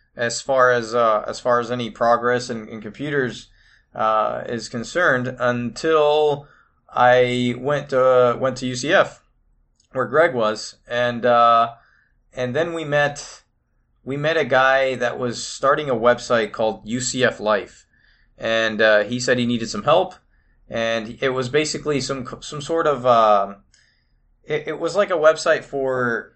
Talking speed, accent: 165 wpm, American